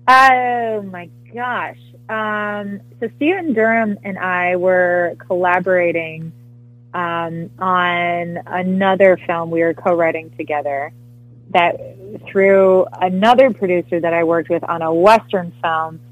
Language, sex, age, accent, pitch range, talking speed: English, female, 20-39, American, 150-200 Hz, 115 wpm